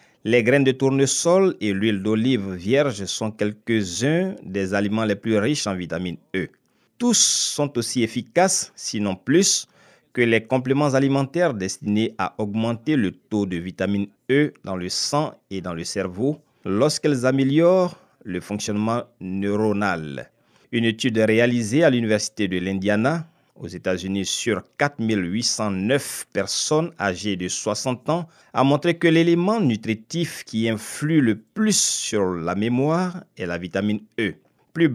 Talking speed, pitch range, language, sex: 140 wpm, 100-145 Hz, French, male